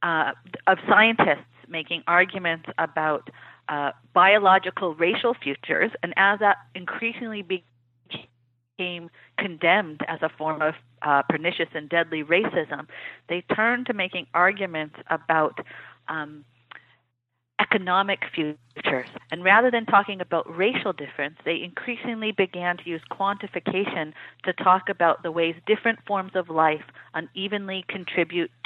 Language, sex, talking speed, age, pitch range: English, female, 120 wpm, 40-59, 160-195 Hz